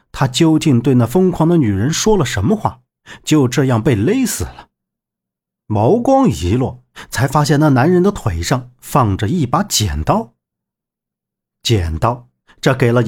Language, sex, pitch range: Chinese, male, 110-150 Hz